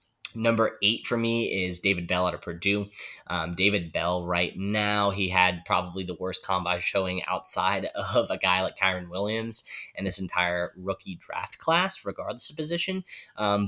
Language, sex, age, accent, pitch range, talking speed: English, male, 10-29, American, 95-110 Hz, 170 wpm